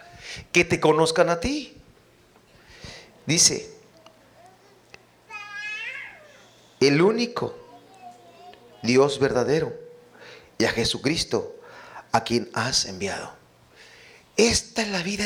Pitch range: 220-275 Hz